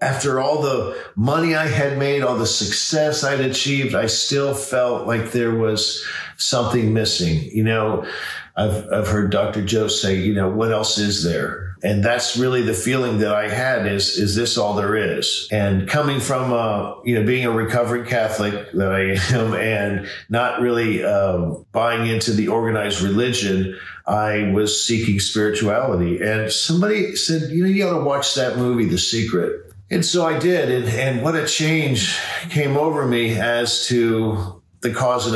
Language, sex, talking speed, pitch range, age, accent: English, male, 175 wpm, 100-120 Hz, 50-69, American